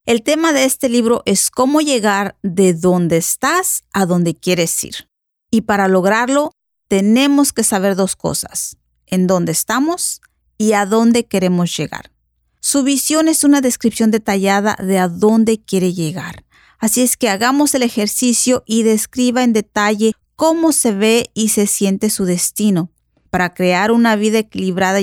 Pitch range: 195-245 Hz